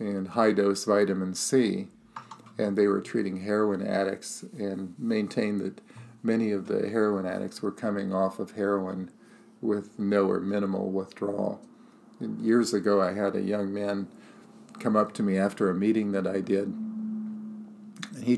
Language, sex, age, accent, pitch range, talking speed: English, male, 50-69, American, 100-125 Hz, 155 wpm